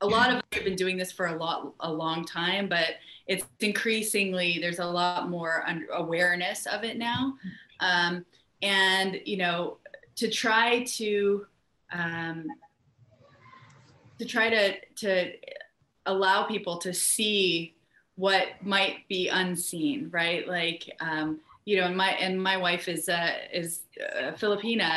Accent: American